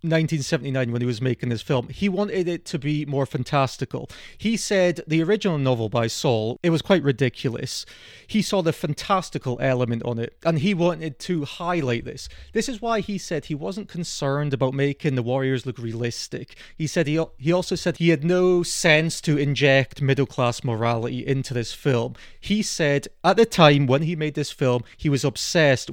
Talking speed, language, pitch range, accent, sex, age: 190 wpm, English, 130-170 Hz, British, male, 30-49